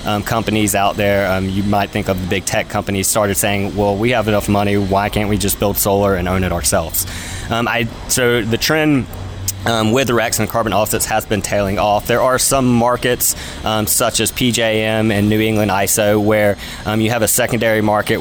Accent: American